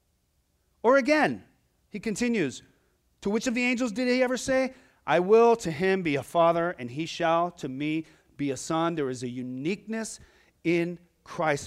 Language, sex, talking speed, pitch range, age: English, male, 175 wpm, 150-225 Hz, 40-59